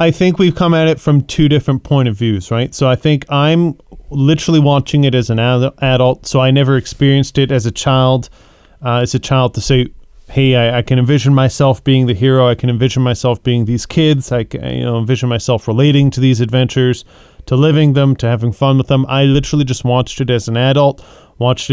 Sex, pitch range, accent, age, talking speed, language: male, 125-145 Hz, American, 30-49, 215 wpm, English